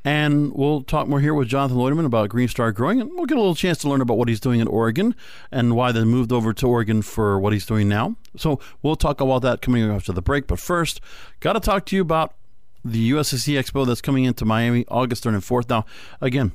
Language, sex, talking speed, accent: English, male, 245 wpm, American